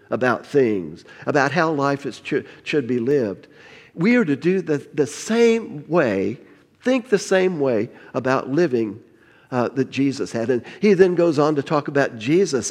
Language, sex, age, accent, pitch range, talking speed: English, male, 50-69, American, 135-185 Hz, 175 wpm